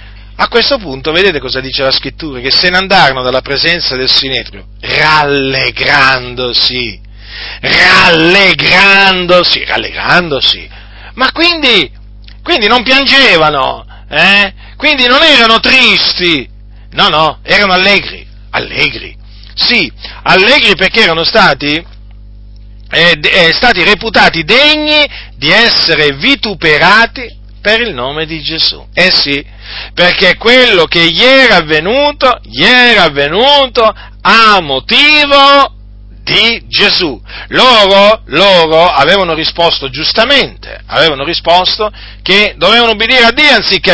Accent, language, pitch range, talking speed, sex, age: native, Italian, 135-210 Hz, 110 wpm, male, 40-59